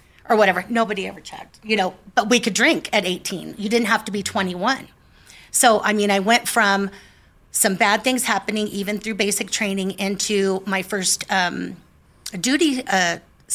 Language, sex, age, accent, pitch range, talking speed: English, female, 40-59, American, 185-210 Hz, 175 wpm